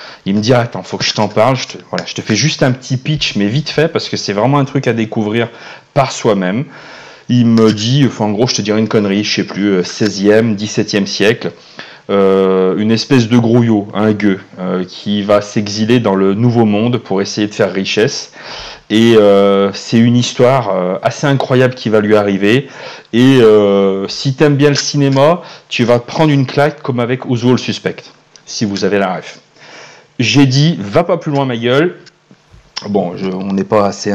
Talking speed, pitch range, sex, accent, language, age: 215 wpm, 100-130 Hz, male, French, French, 30-49